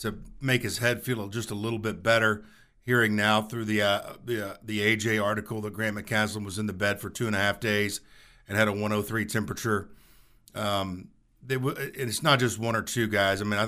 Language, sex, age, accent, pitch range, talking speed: English, male, 50-69, American, 100-120 Hz, 225 wpm